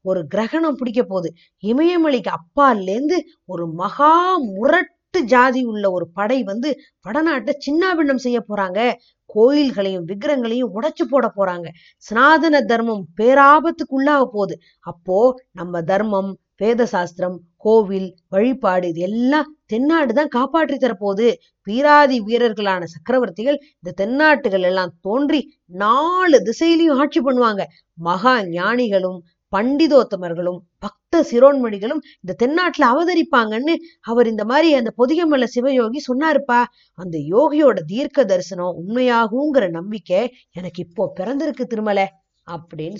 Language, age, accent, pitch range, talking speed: Tamil, 20-39, native, 190-275 Hz, 105 wpm